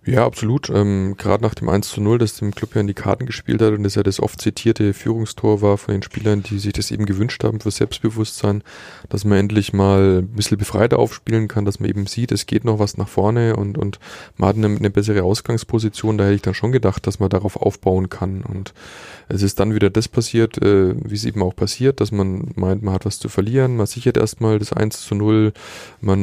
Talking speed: 240 wpm